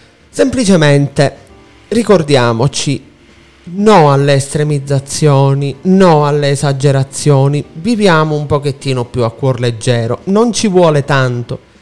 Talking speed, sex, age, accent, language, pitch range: 95 wpm, male, 30-49, native, Italian, 125-165 Hz